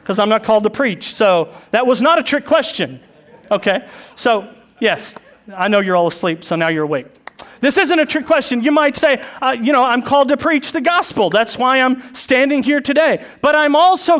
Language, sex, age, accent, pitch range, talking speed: English, male, 40-59, American, 225-295 Hz, 215 wpm